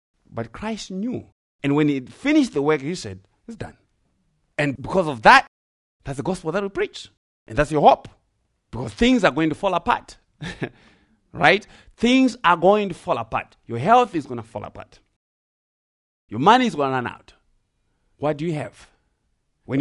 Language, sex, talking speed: English, male, 180 wpm